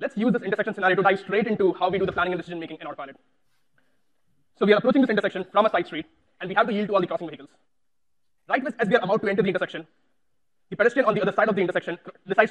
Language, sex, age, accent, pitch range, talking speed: English, male, 20-39, Indian, 185-225 Hz, 285 wpm